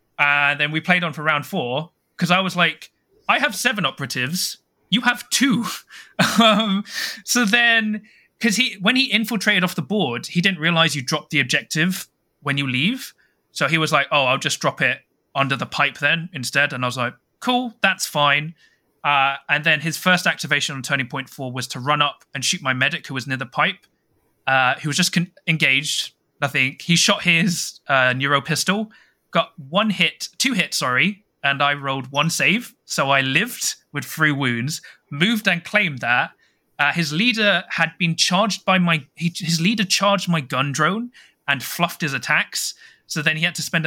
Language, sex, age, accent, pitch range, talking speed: English, male, 20-39, British, 140-190 Hz, 195 wpm